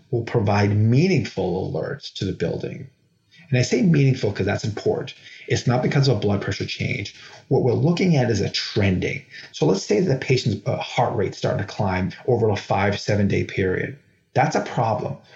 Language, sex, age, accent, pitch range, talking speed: English, male, 30-49, American, 105-140 Hz, 190 wpm